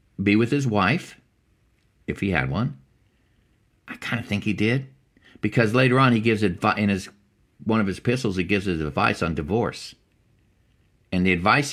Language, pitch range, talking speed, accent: English, 95-120 Hz, 180 wpm, American